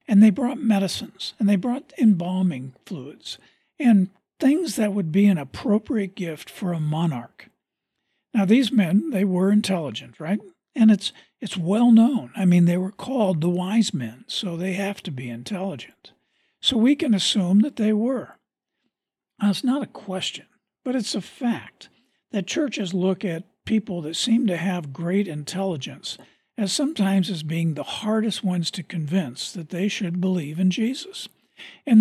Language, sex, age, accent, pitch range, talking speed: English, male, 60-79, American, 180-225 Hz, 165 wpm